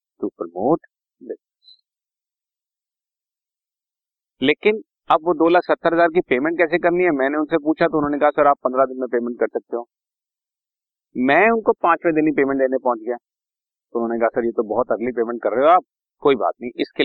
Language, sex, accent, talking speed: Hindi, male, native, 170 wpm